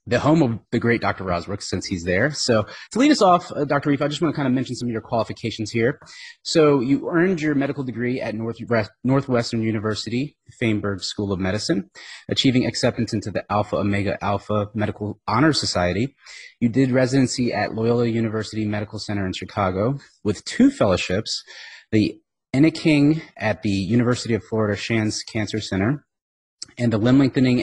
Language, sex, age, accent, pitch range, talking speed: English, male, 30-49, American, 105-135 Hz, 175 wpm